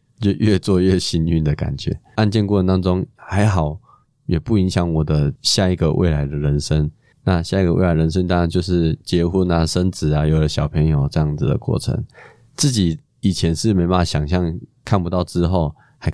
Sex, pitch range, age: male, 80-95 Hz, 20-39